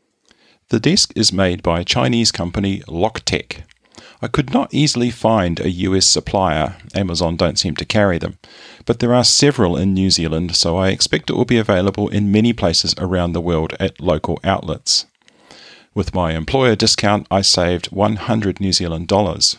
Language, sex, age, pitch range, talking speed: English, male, 40-59, 90-110 Hz, 170 wpm